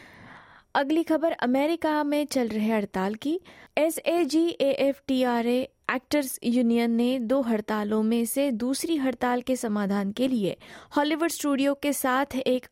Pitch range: 220-275 Hz